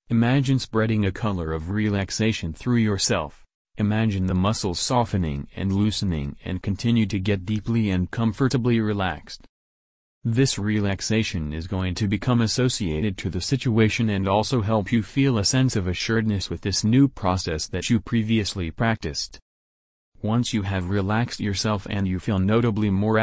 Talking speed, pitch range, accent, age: 150 wpm, 95-115 Hz, American, 30-49